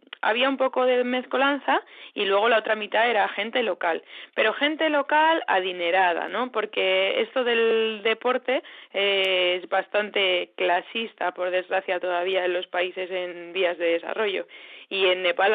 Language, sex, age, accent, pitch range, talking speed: Spanish, female, 20-39, Spanish, 190-245 Hz, 145 wpm